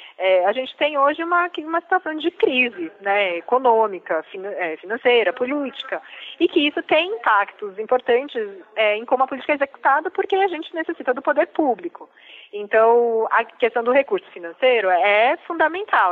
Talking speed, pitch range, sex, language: 155 wpm, 205-295 Hz, female, Portuguese